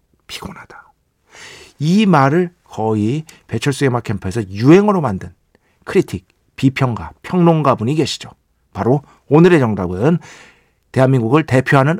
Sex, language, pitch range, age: male, Korean, 110-155 Hz, 50-69